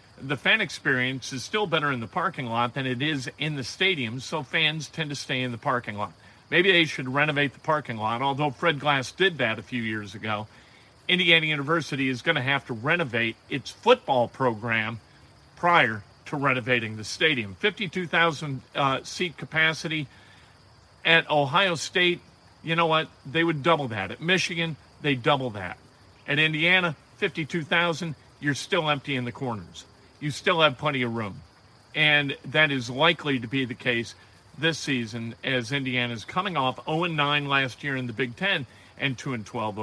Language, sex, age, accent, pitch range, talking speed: English, male, 50-69, American, 120-165 Hz, 170 wpm